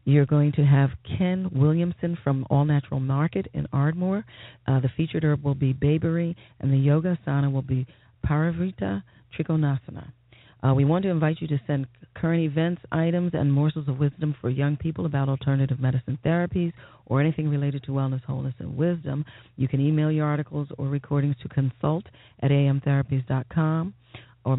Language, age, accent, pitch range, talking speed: English, 40-59, American, 130-150 Hz, 170 wpm